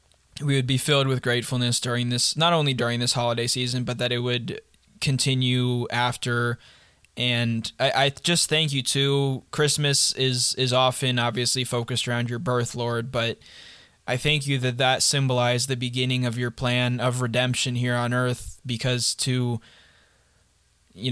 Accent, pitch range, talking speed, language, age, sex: American, 120-130 Hz, 160 wpm, English, 20-39, male